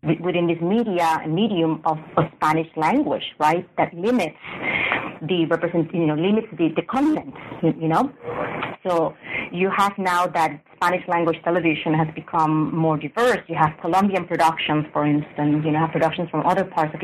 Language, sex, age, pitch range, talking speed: English, female, 30-49, 155-185 Hz, 170 wpm